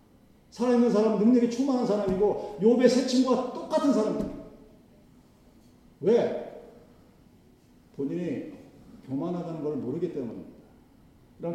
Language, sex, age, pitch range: Korean, male, 40-59, 145-200 Hz